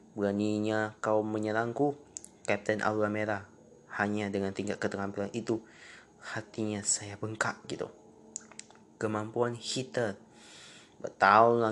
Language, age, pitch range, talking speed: Indonesian, 20-39, 100-115 Hz, 90 wpm